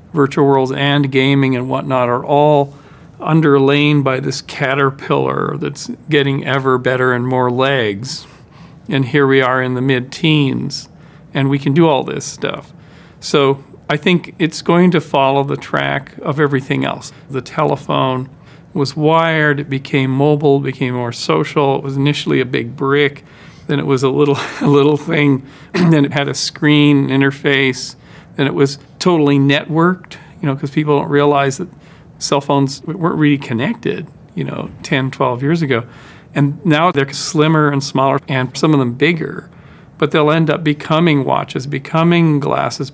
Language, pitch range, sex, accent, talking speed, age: English, 135-155 Hz, male, American, 165 wpm, 40-59